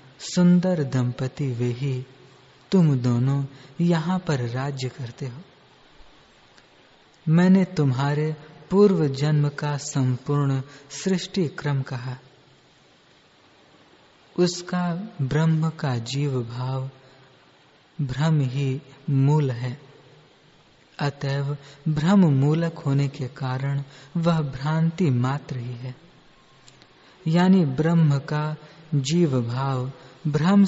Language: English